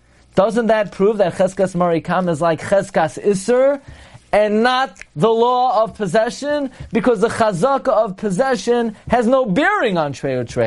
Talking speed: 150 wpm